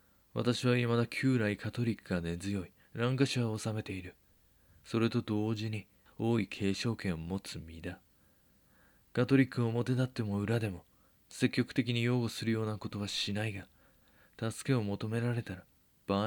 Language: Japanese